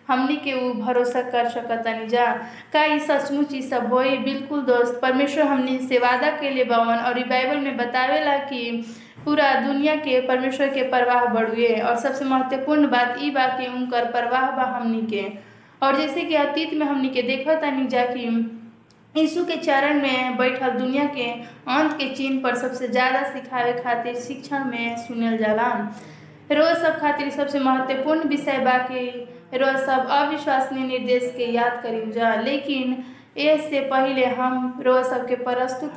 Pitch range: 240-275 Hz